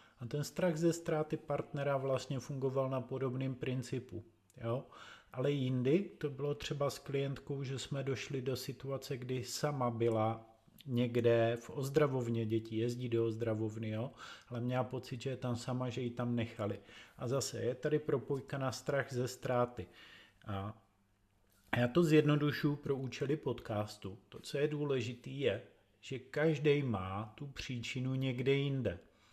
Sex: male